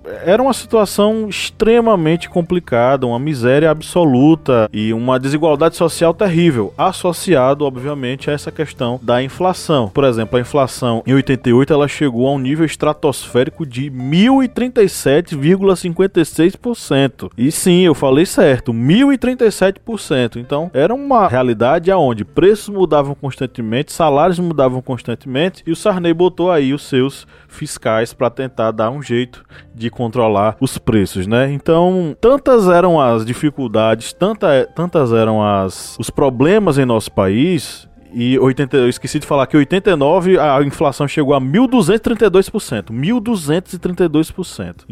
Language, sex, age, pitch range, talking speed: Portuguese, male, 20-39, 130-190 Hz, 125 wpm